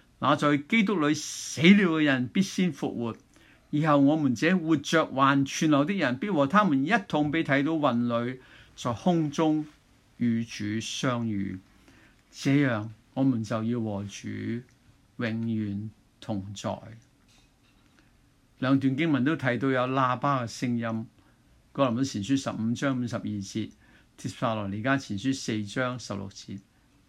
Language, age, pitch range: Chinese, 50-69, 120-170 Hz